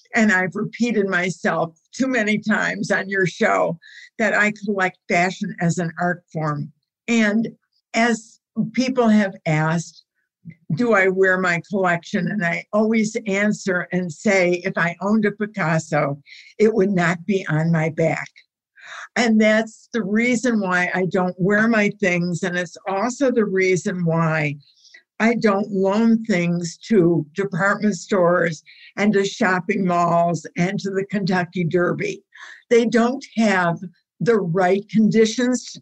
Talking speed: 140 wpm